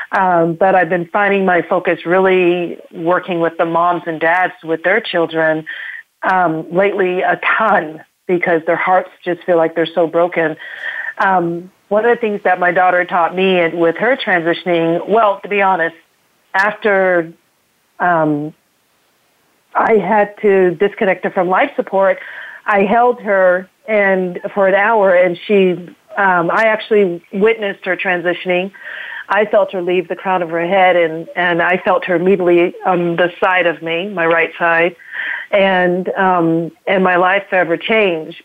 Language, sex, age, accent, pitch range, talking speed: English, female, 40-59, American, 175-205 Hz, 160 wpm